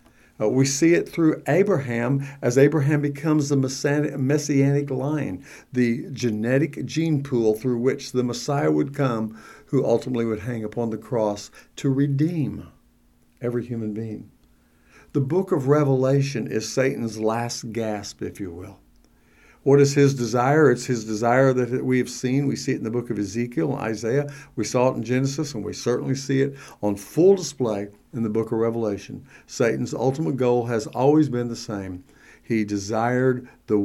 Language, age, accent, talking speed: English, 60-79, American, 170 wpm